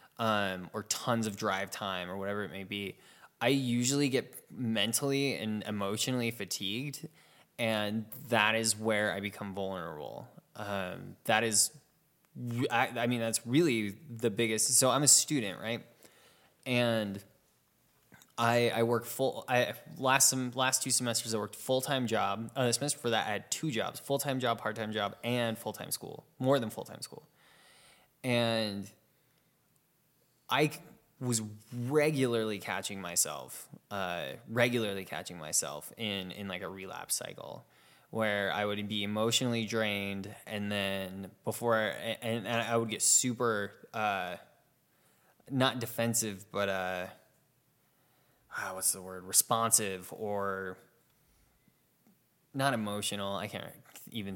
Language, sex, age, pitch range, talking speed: English, male, 20-39, 105-130 Hz, 135 wpm